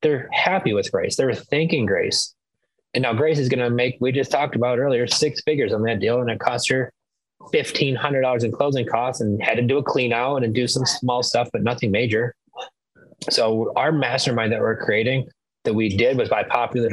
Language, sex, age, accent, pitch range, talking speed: English, male, 30-49, American, 110-130 Hz, 210 wpm